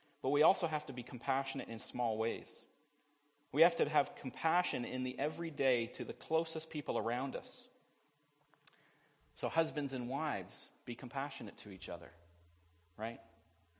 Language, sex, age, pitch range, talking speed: English, male, 40-59, 105-145 Hz, 150 wpm